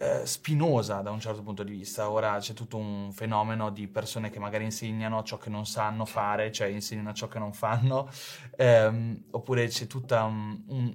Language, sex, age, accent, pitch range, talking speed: Italian, male, 20-39, native, 115-140 Hz, 180 wpm